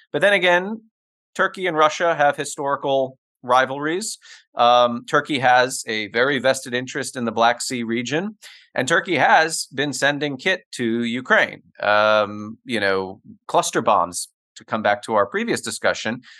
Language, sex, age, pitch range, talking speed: English, male, 30-49, 110-150 Hz, 150 wpm